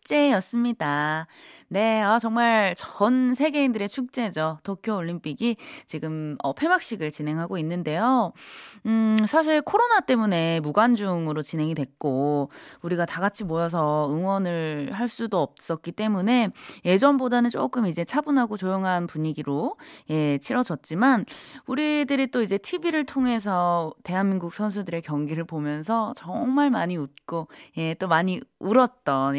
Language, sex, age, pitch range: Korean, female, 20-39, 170-250 Hz